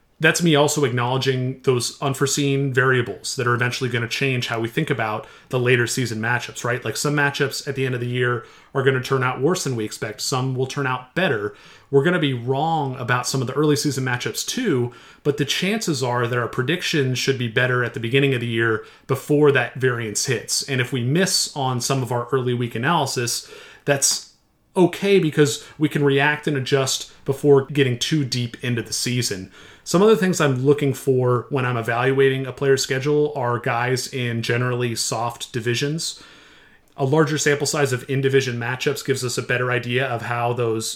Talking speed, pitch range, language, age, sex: 200 wpm, 120-145 Hz, English, 30-49, male